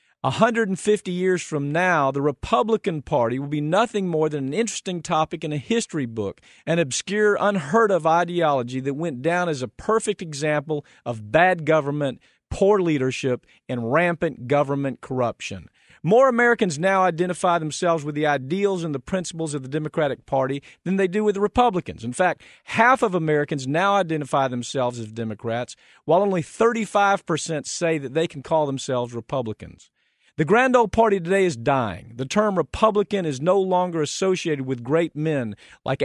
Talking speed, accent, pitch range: 165 wpm, American, 135-190 Hz